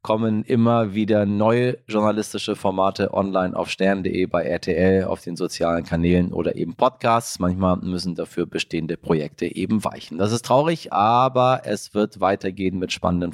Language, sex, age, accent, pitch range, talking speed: German, male, 30-49, German, 95-110 Hz, 155 wpm